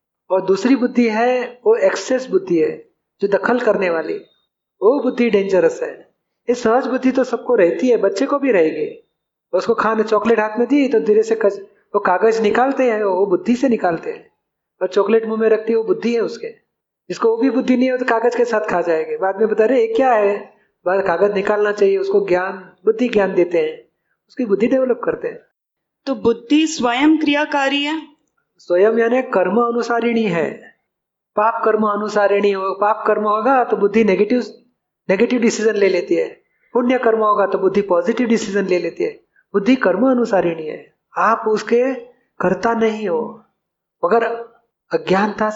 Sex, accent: male, native